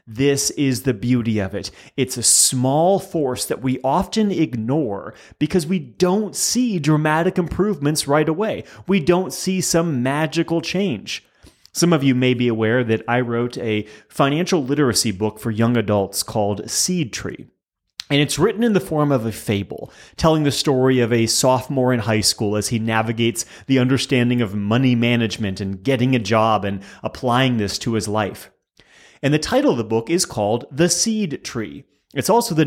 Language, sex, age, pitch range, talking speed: English, male, 30-49, 115-155 Hz, 180 wpm